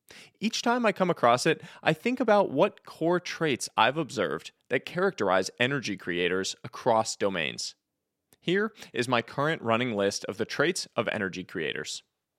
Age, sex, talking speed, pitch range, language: 30-49, male, 155 wpm, 110-155 Hz, English